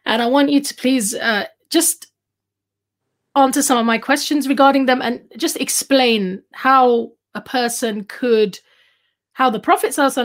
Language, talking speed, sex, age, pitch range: English, 150 wpm, female, 20-39, 205-270 Hz